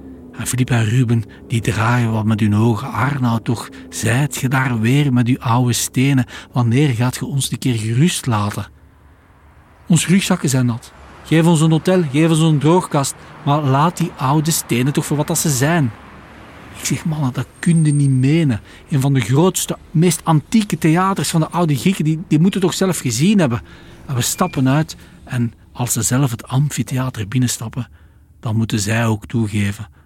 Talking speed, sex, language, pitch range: 185 wpm, male, Dutch, 105-145 Hz